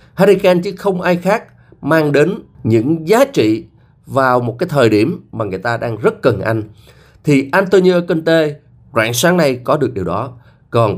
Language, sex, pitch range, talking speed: Vietnamese, male, 125-180 Hz, 180 wpm